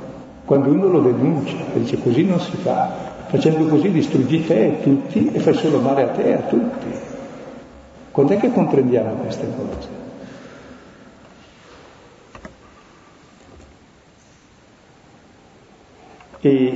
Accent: native